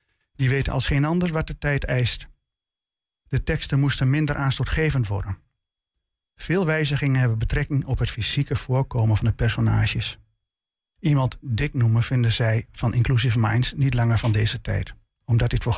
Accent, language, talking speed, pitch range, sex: Dutch, Dutch, 160 wpm, 115-145 Hz, male